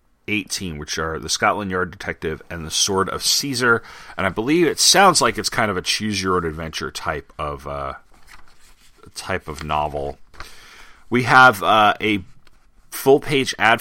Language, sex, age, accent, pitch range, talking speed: English, male, 30-49, American, 85-115 Hz, 150 wpm